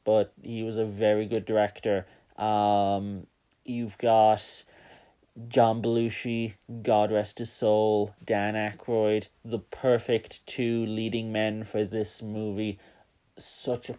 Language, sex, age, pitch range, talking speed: English, male, 30-49, 105-125 Hz, 120 wpm